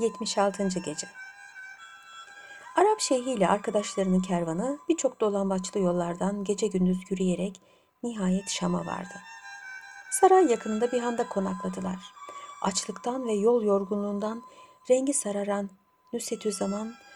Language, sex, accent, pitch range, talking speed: Turkish, female, native, 190-260 Hz, 100 wpm